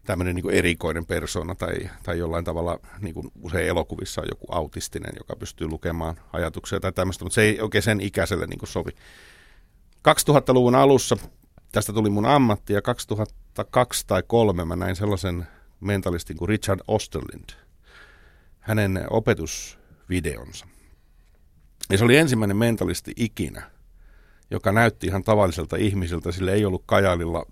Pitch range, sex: 85-110 Hz, male